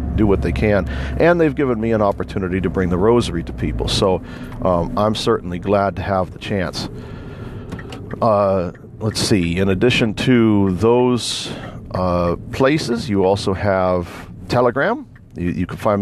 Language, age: English, 40-59